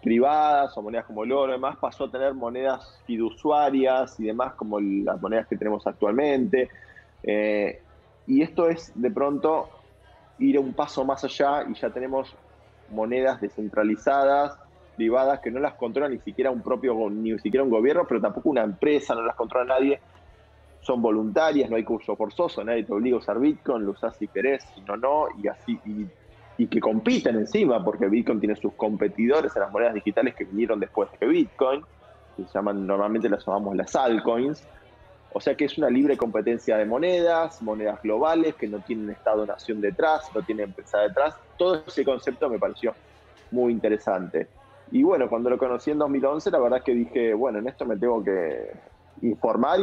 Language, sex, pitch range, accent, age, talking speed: Spanish, male, 105-140 Hz, Argentinian, 20-39, 185 wpm